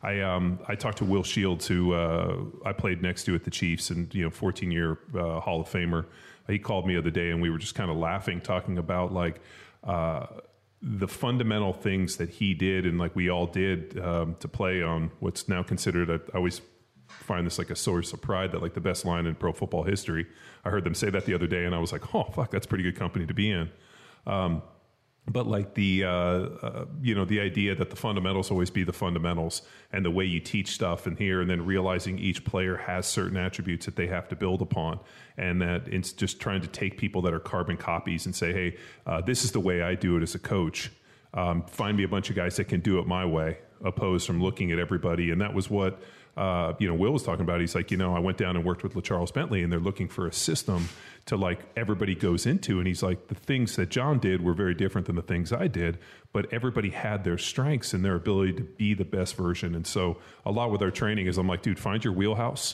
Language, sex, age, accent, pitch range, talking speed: English, male, 30-49, American, 85-100 Hz, 250 wpm